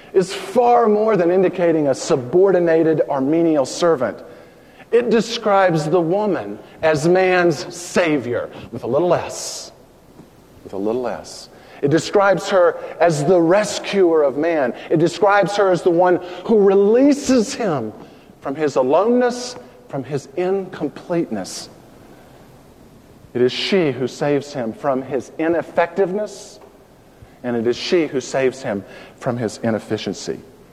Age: 50-69